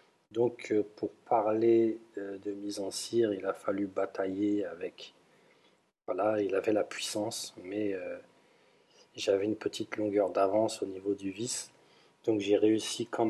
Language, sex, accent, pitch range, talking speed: French, male, French, 100-115 Hz, 155 wpm